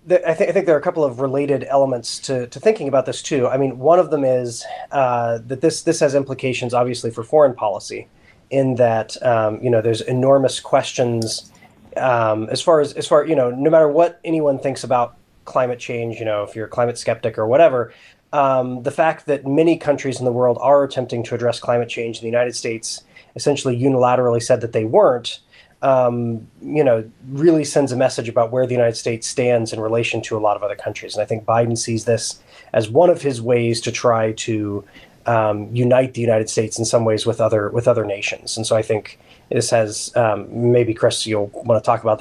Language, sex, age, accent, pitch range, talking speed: English, male, 20-39, American, 115-140 Hz, 220 wpm